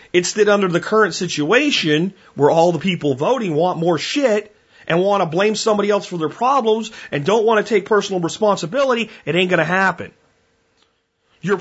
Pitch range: 190-280 Hz